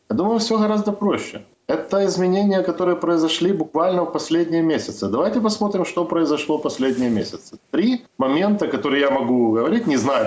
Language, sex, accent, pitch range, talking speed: Russian, male, native, 110-155 Hz, 165 wpm